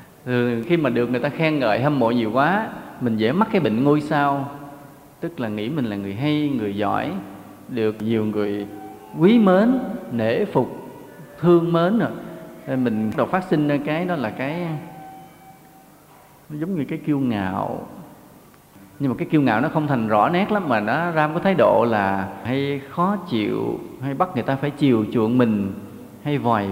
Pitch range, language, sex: 120-160 Hz, Vietnamese, male